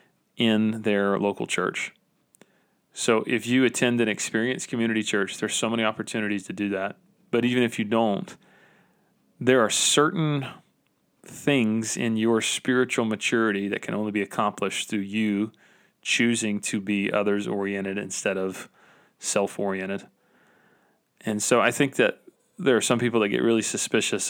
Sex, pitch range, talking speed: male, 100-120 Hz, 145 wpm